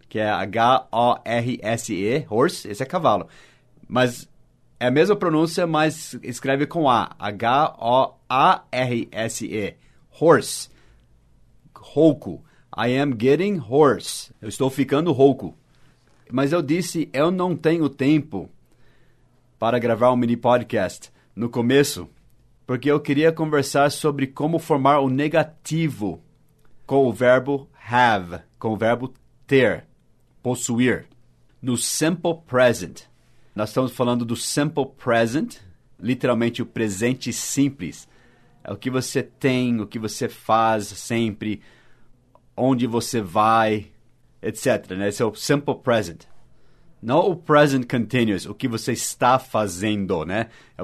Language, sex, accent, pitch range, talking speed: English, male, Brazilian, 115-145 Hz, 125 wpm